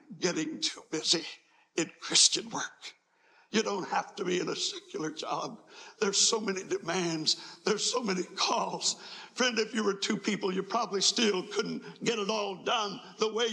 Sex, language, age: male, English, 60-79